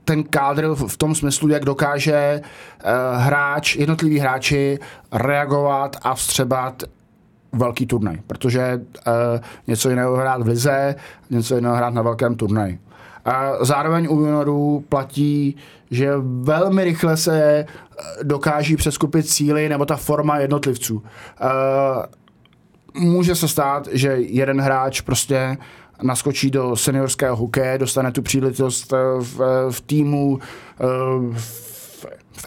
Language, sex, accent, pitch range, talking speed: Czech, male, native, 130-145 Hz, 110 wpm